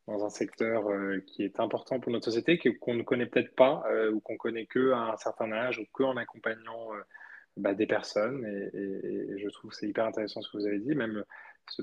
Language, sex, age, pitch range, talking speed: French, male, 20-39, 100-115 Hz, 235 wpm